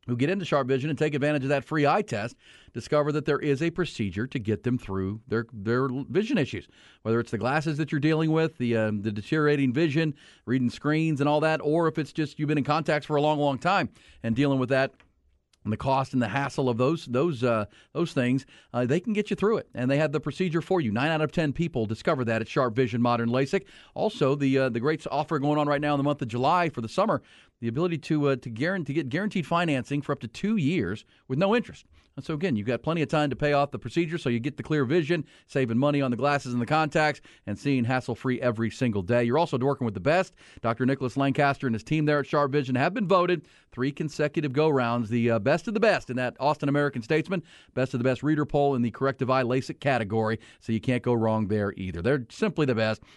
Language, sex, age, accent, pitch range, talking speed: English, male, 40-59, American, 125-155 Hz, 255 wpm